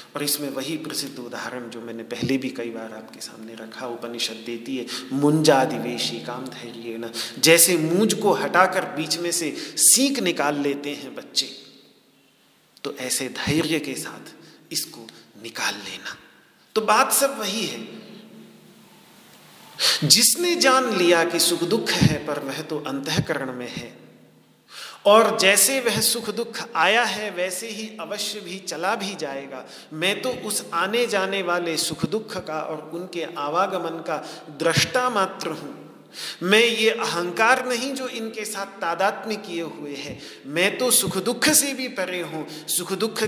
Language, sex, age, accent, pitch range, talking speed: Hindi, male, 40-59, native, 150-220 Hz, 150 wpm